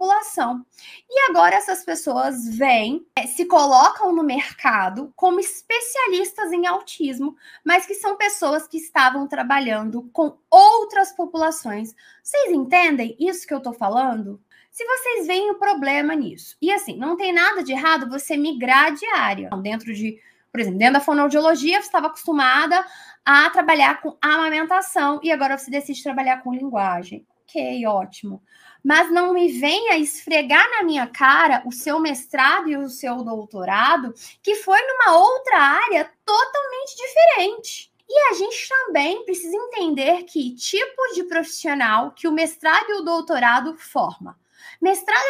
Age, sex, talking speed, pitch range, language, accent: 10-29, female, 145 wpm, 265-375 Hz, Portuguese, Brazilian